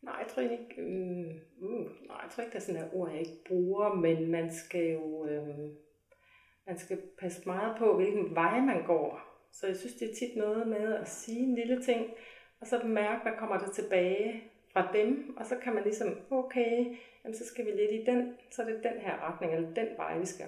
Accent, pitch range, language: native, 175-225 Hz, Danish